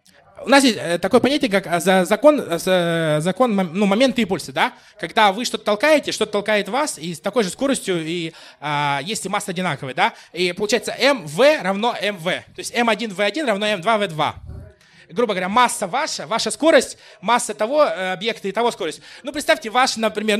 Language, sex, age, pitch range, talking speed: Russian, male, 20-39, 185-245 Hz, 185 wpm